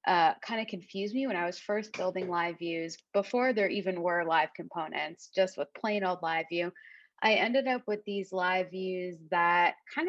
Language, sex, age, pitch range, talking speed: English, female, 20-39, 170-210 Hz, 195 wpm